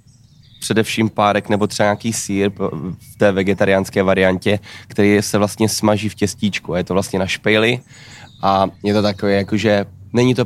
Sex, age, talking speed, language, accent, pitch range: male, 20-39, 165 wpm, Czech, native, 95-110 Hz